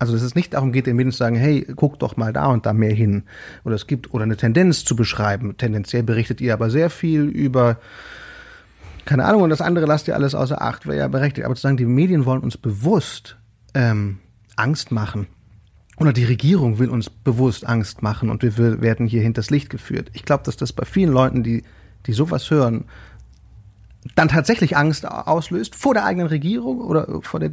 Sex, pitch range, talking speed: male, 115-155 Hz, 210 wpm